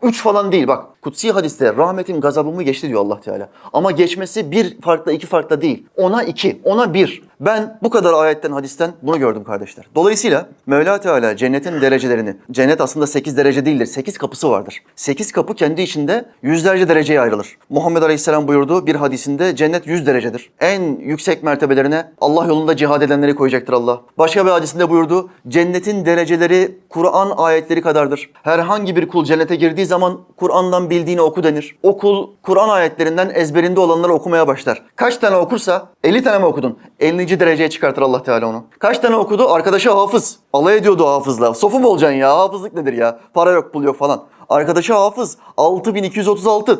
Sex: male